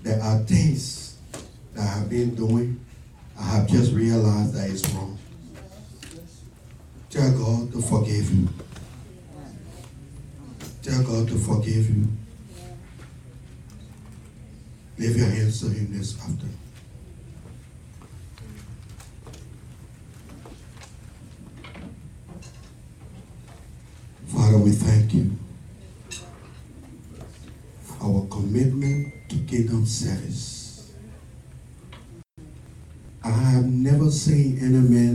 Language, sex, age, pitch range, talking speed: English, male, 60-79, 105-120 Hz, 80 wpm